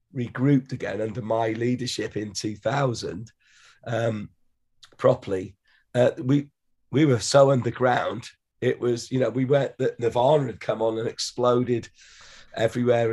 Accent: British